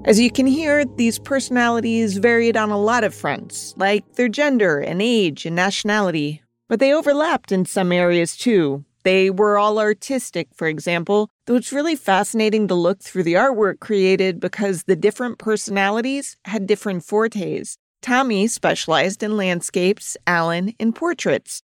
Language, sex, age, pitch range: English, female, 40-59, 185-230 Hz